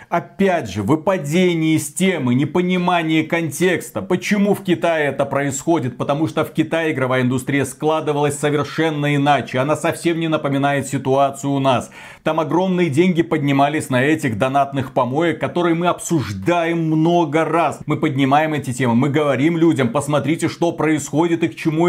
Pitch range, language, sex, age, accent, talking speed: 150-180 Hz, Russian, male, 40-59, native, 150 wpm